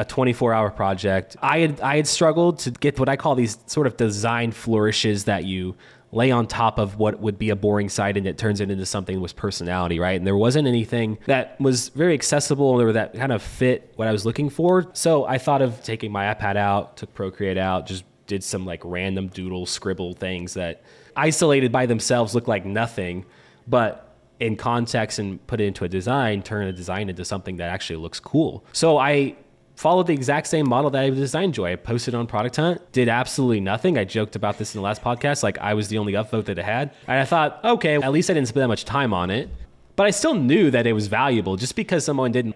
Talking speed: 230 wpm